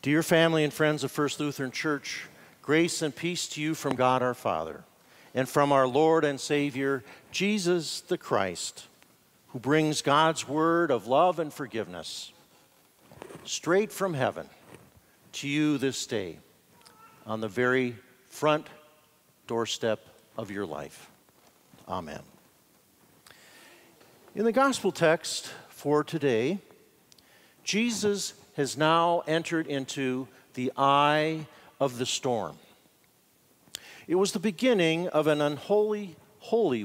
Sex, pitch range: male, 135-175 Hz